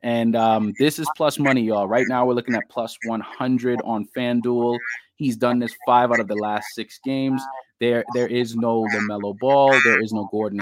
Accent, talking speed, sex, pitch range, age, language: American, 205 wpm, male, 110-130 Hz, 20-39, English